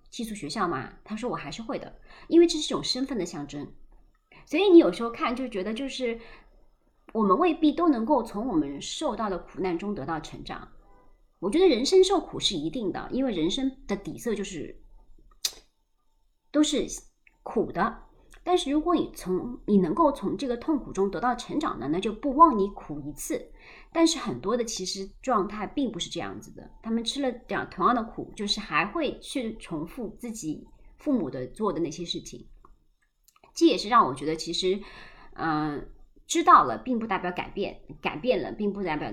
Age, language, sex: 30-49, Chinese, male